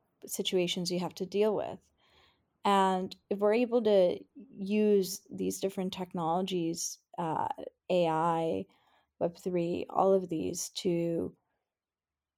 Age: 20-39